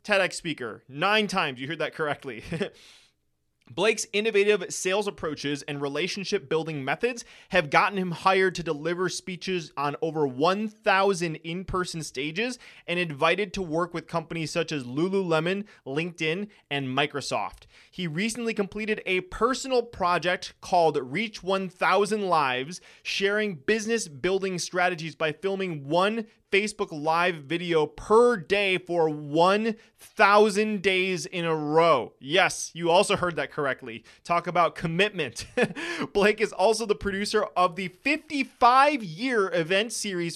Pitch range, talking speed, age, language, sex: 160-205 Hz, 130 wpm, 20-39, English, male